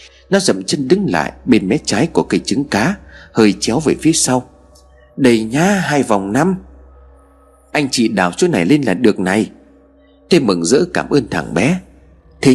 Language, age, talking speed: Vietnamese, 30-49, 185 wpm